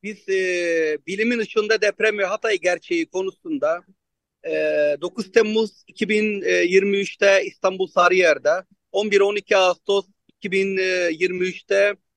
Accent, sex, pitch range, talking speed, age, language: native, male, 180-215 Hz, 90 wpm, 40-59, Turkish